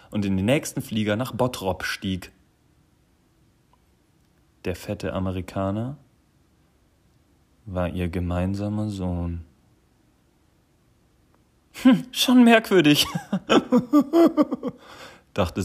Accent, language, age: German, German, 40-59